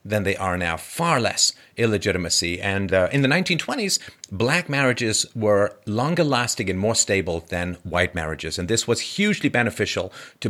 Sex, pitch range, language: male, 95-140 Hz, English